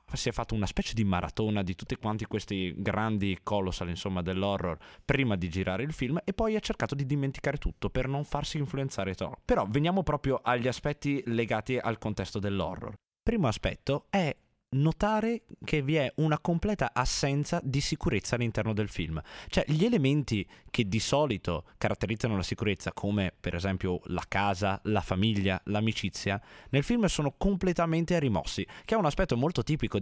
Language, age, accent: Italian, 20-39, native